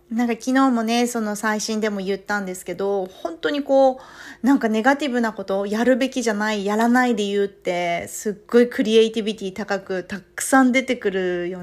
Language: Japanese